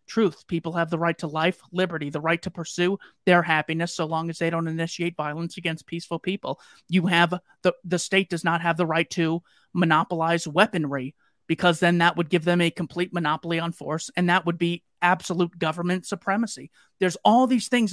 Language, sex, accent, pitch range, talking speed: English, male, American, 155-185 Hz, 195 wpm